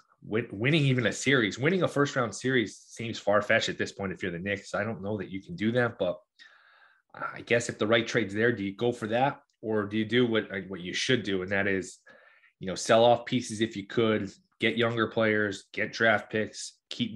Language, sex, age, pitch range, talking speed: English, male, 20-39, 100-115 Hz, 235 wpm